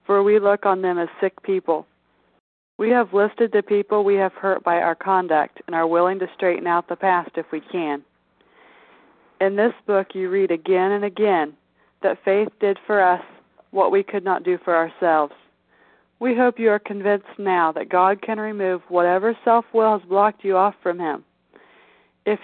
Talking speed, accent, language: 185 wpm, American, English